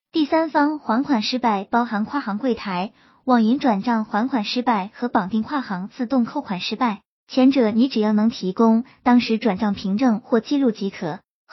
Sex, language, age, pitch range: male, Chinese, 20-39, 215-280 Hz